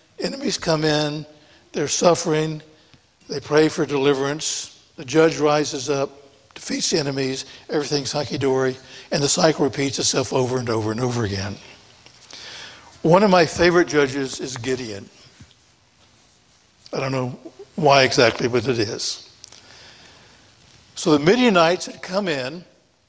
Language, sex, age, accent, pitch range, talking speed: English, male, 60-79, American, 140-180 Hz, 130 wpm